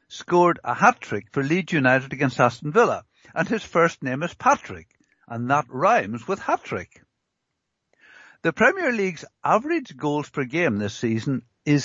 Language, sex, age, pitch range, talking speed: English, male, 60-79, 120-165 Hz, 150 wpm